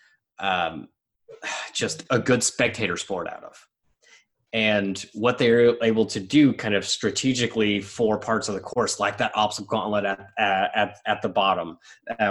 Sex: male